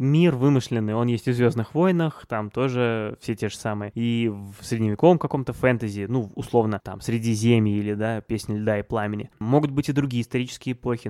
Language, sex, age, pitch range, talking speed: Russian, male, 20-39, 110-135 Hz, 190 wpm